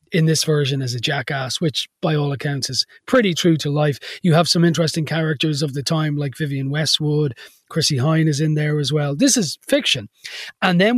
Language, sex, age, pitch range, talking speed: English, male, 30-49, 145-185 Hz, 210 wpm